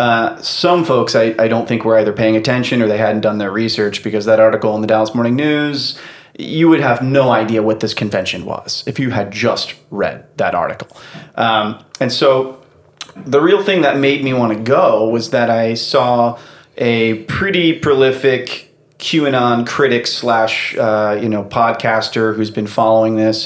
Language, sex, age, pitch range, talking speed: English, male, 30-49, 110-130 Hz, 180 wpm